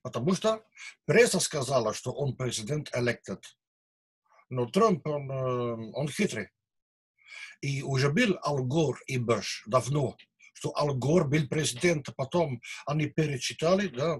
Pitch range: 130-180 Hz